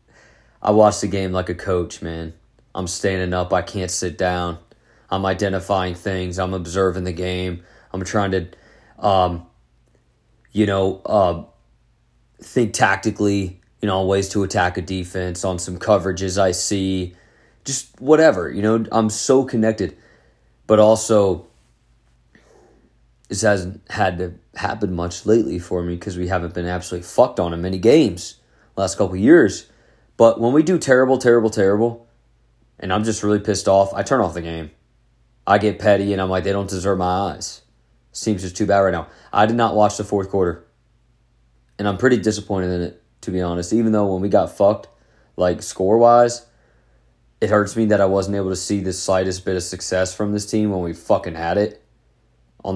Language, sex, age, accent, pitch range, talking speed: English, male, 30-49, American, 90-105 Hz, 180 wpm